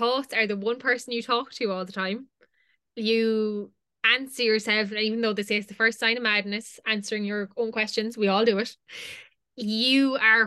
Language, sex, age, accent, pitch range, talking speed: English, female, 20-39, Irish, 195-225 Hz, 190 wpm